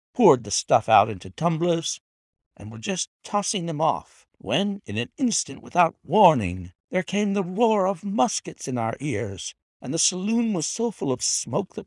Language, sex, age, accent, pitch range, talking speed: English, male, 60-79, American, 110-180 Hz, 180 wpm